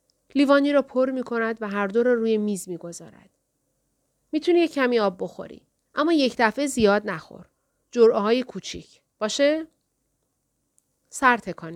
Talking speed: 145 wpm